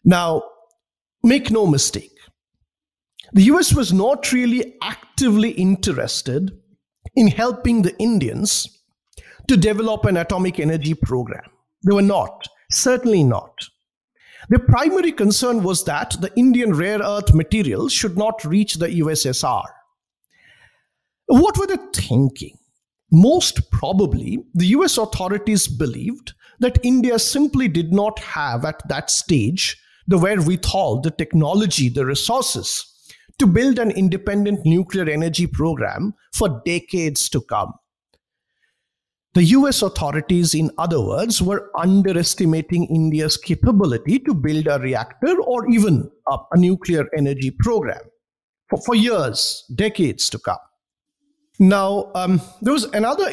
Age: 50-69